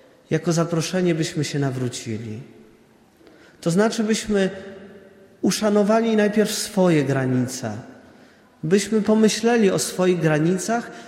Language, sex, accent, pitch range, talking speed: Polish, male, native, 125-175 Hz, 90 wpm